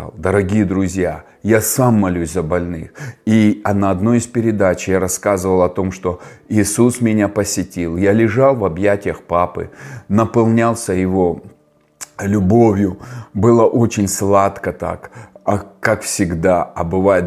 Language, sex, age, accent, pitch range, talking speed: Russian, male, 30-49, native, 95-115 Hz, 130 wpm